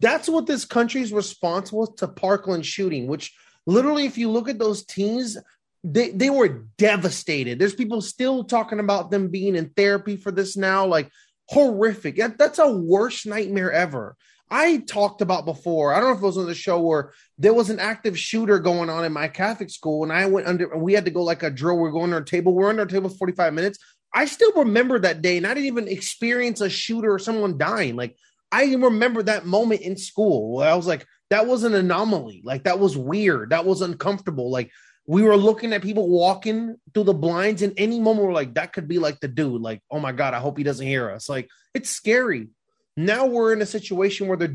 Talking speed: 220 wpm